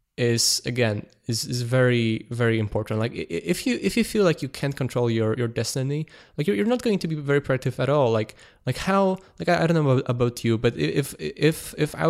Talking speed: 225 wpm